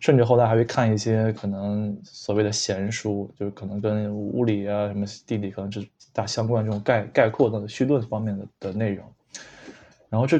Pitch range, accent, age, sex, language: 105-140 Hz, native, 20-39, male, Chinese